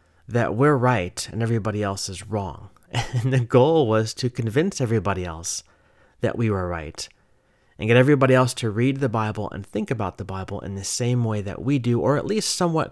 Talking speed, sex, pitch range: 205 wpm, male, 100-120 Hz